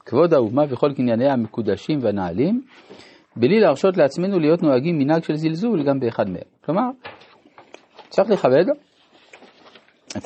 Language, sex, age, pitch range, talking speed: Hebrew, male, 50-69, 125-170 Hz, 125 wpm